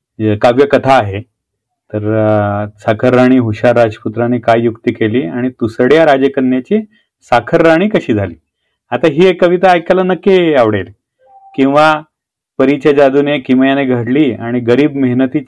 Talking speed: 90 wpm